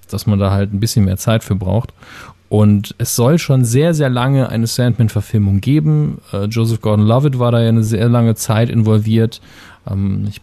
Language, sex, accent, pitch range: German, male, German, 105-130 Hz